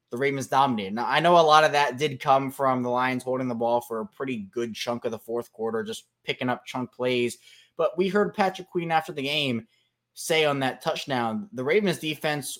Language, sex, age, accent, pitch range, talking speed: English, male, 20-39, American, 120-155 Hz, 225 wpm